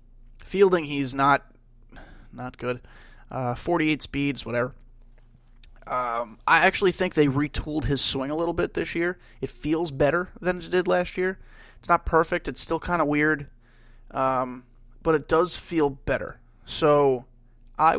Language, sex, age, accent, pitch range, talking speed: English, male, 20-39, American, 120-150 Hz, 155 wpm